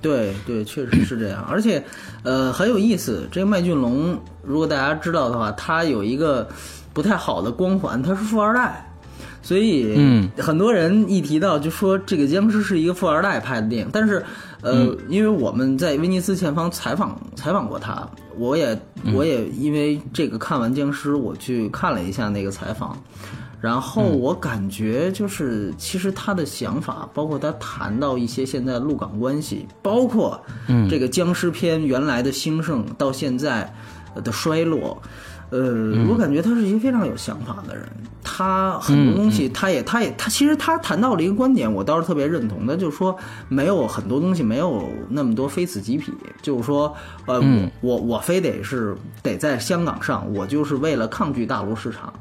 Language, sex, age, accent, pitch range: Chinese, male, 20-39, native, 115-185 Hz